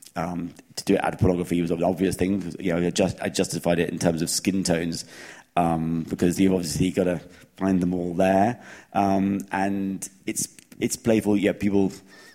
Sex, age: male, 30-49